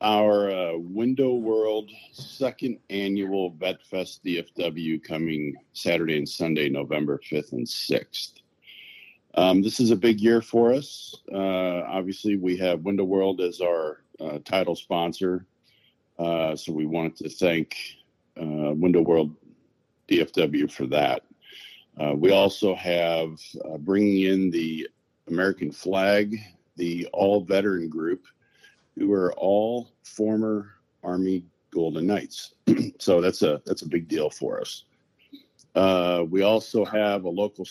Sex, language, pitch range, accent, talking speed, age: male, English, 85-105 Hz, American, 135 wpm, 50-69